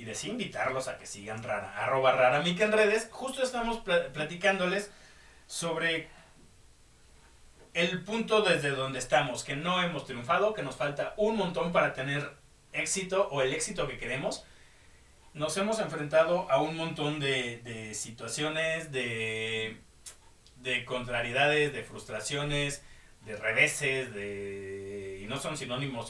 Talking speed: 140 wpm